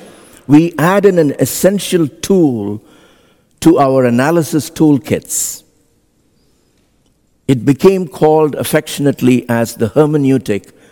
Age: 60-79